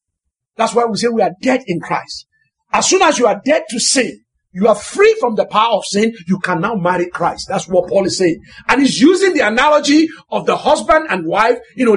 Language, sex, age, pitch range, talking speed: English, male, 50-69, 205-315 Hz, 235 wpm